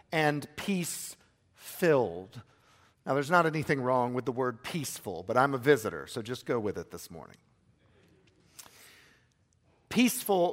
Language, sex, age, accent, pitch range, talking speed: English, male, 50-69, American, 120-185 Hz, 135 wpm